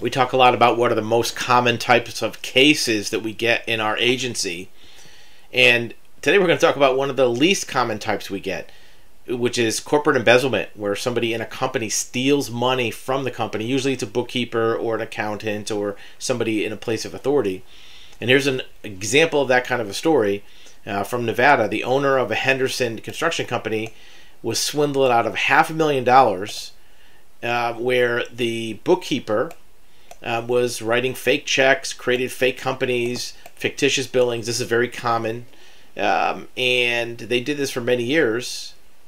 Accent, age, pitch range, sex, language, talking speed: American, 40-59, 115-130 Hz, male, English, 180 wpm